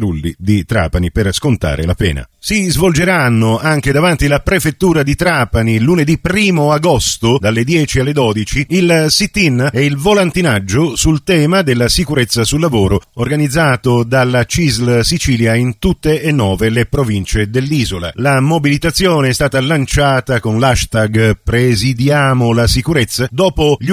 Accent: native